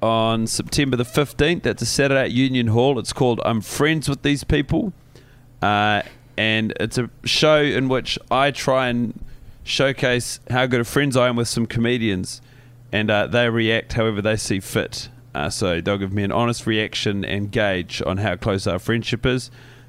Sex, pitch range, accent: male, 115-135 Hz, Australian